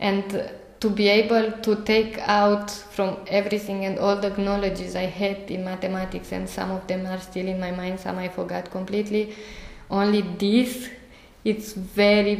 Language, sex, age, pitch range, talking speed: Czech, female, 20-39, 180-205 Hz, 165 wpm